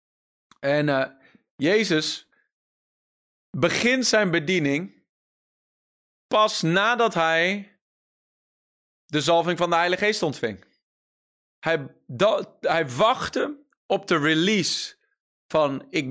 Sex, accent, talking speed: male, Dutch, 90 wpm